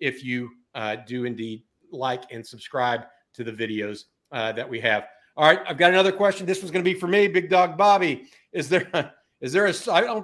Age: 50-69